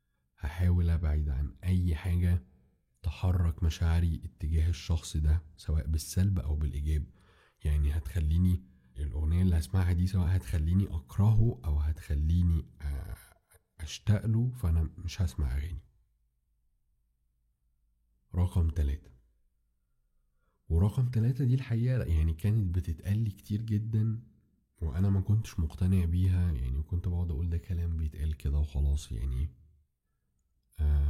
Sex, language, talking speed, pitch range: male, Arabic, 110 wpm, 75-95 Hz